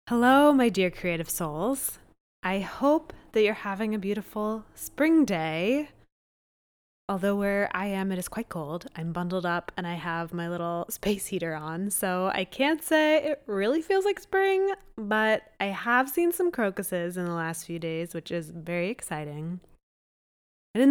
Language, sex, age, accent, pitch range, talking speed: English, female, 20-39, American, 180-270 Hz, 170 wpm